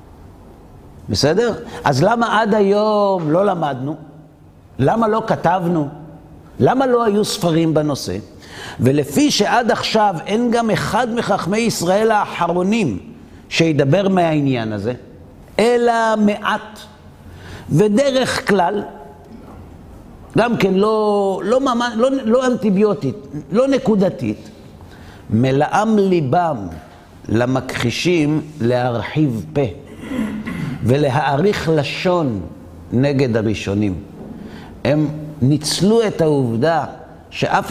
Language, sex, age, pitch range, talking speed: Hebrew, male, 50-69, 120-200 Hz, 90 wpm